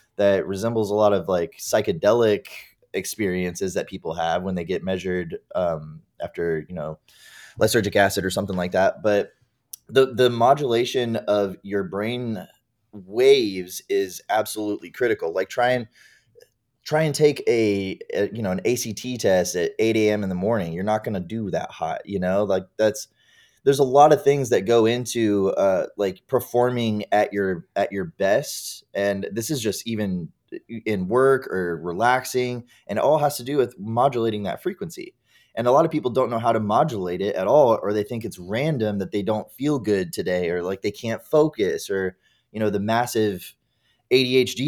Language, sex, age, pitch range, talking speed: English, male, 20-39, 100-125 Hz, 180 wpm